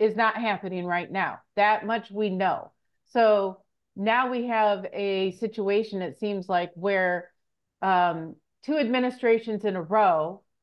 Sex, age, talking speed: female, 40-59, 140 wpm